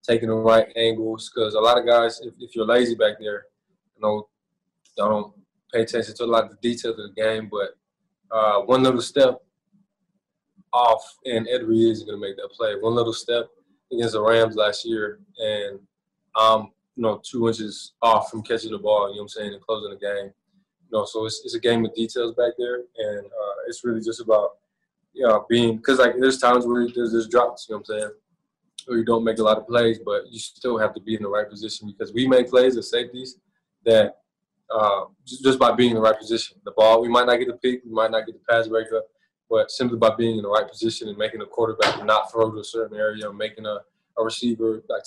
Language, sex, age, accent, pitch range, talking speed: English, male, 20-39, American, 110-125 Hz, 240 wpm